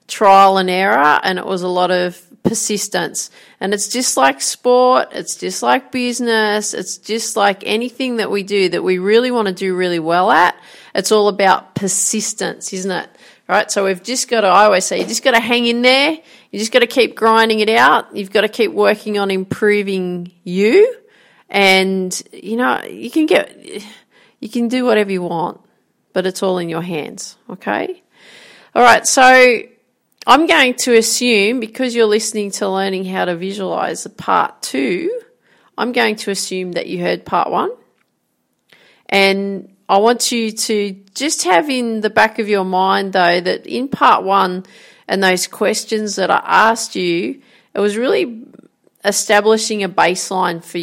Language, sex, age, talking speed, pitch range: English, female, 40-59, 180 wpm, 190-235 Hz